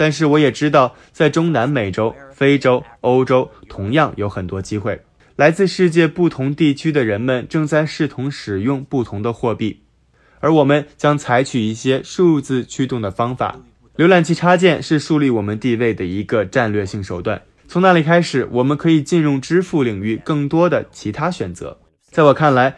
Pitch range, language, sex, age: 110-155 Hz, Chinese, male, 20-39